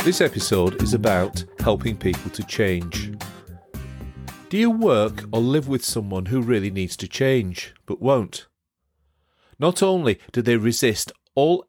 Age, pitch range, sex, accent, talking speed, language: 40-59, 100-145 Hz, male, British, 145 wpm, English